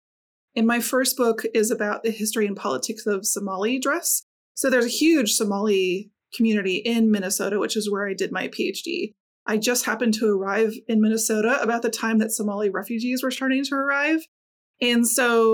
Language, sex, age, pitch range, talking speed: English, female, 20-39, 215-260 Hz, 180 wpm